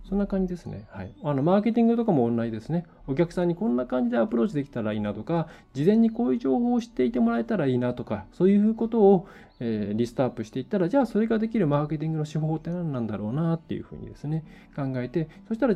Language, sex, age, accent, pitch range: Japanese, male, 20-39, native, 115-180 Hz